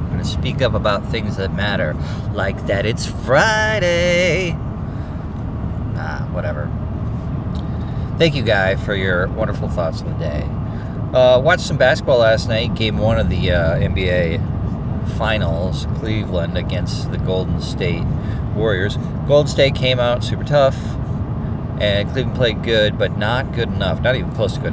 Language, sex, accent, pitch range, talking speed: English, male, American, 100-125 Hz, 145 wpm